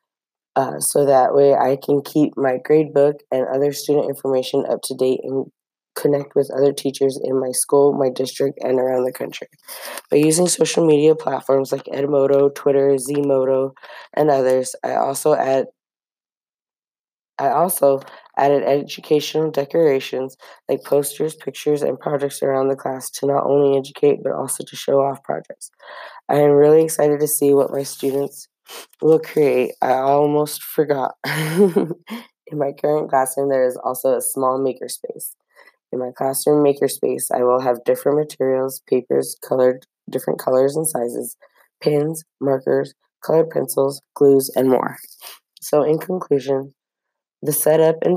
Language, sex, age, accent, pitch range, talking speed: English, female, 20-39, American, 135-150 Hz, 150 wpm